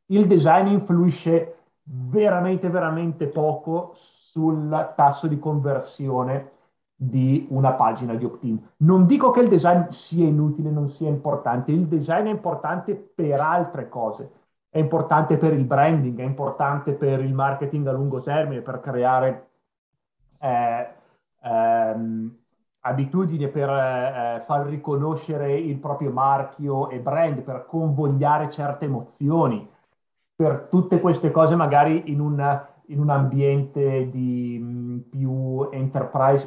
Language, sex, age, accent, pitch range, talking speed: Italian, male, 30-49, native, 130-155 Hz, 125 wpm